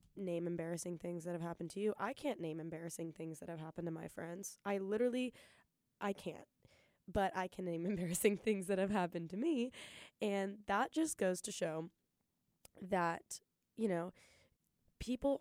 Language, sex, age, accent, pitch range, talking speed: English, female, 10-29, American, 175-210 Hz, 170 wpm